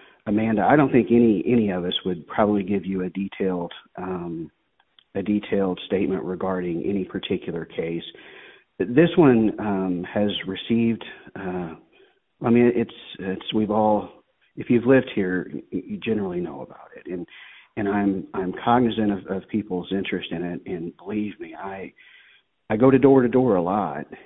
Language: English